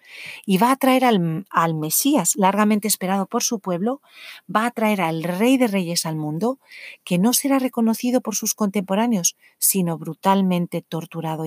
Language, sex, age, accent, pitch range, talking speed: English, female, 40-59, Spanish, 175-225 Hz, 160 wpm